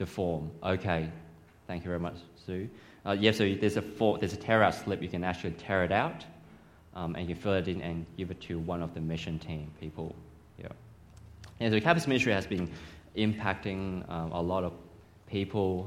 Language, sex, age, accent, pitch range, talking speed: English, male, 20-39, Australian, 85-105 Hz, 210 wpm